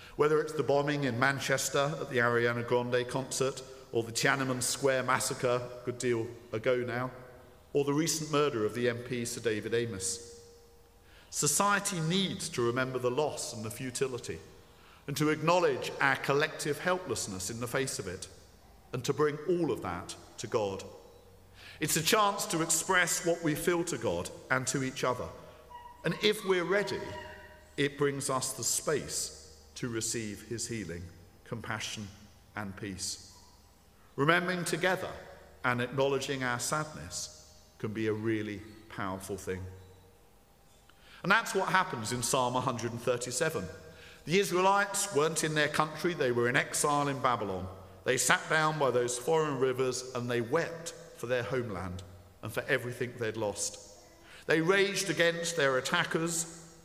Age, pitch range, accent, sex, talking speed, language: 50-69, 110-155 Hz, British, male, 150 wpm, English